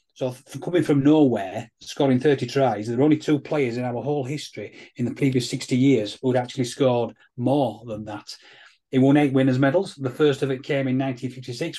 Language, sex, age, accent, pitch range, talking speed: English, male, 30-49, British, 120-140 Hz, 200 wpm